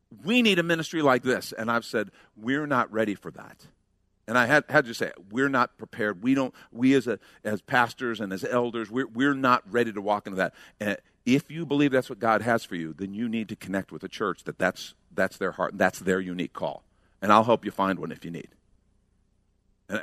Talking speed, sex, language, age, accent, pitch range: 240 wpm, male, English, 50-69, American, 105-175 Hz